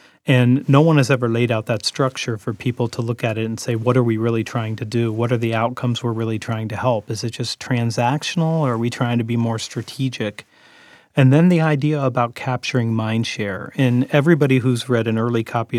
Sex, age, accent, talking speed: male, 40-59, American, 225 wpm